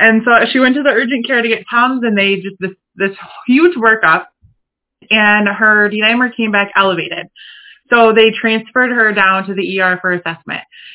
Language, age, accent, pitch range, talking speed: English, 20-39, American, 200-240 Hz, 185 wpm